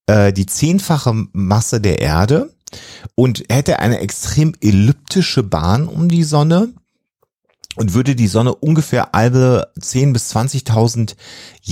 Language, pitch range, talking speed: German, 95-120 Hz, 120 wpm